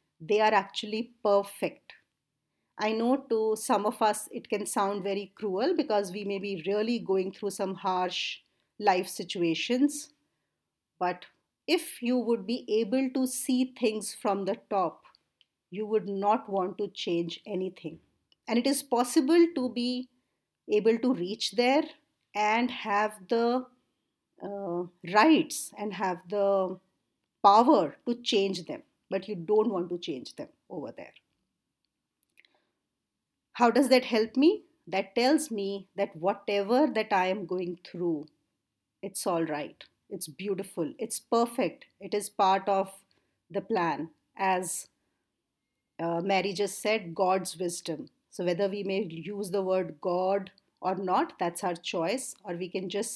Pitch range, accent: 185-235 Hz, Indian